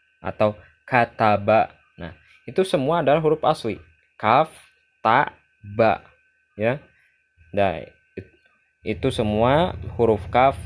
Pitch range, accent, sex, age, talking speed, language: 95-125 Hz, native, male, 20-39, 105 wpm, Indonesian